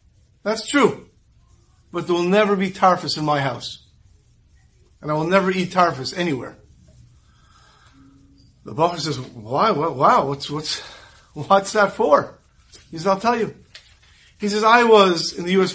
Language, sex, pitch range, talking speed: English, male, 120-195 Hz, 155 wpm